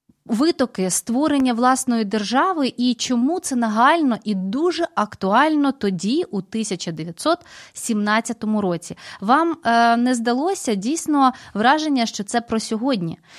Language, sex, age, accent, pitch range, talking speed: Ukrainian, female, 20-39, native, 210-280 Hz, 110 wpm